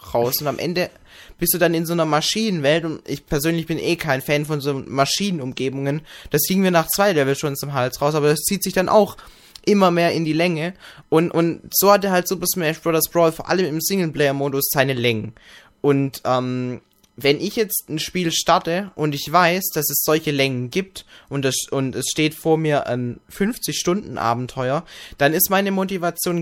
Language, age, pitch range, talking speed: German, 20-39, 135-170 Hz, 200 wpm